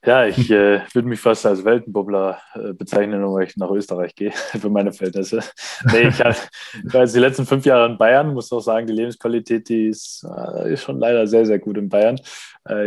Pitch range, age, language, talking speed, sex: 100-115 Hz, 20-39, German, 220 wpm, male